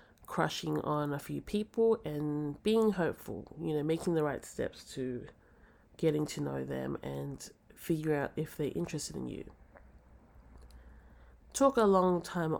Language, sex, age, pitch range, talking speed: English, female, 20-39, 100-170 Hz, 150 wpm